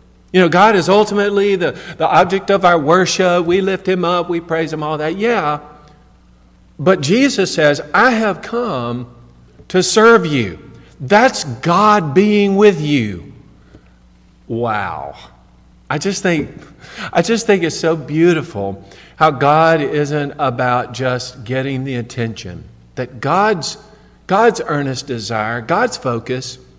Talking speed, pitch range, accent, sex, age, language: 135 wpm, 105-175 Hz, American, male, 50-69, English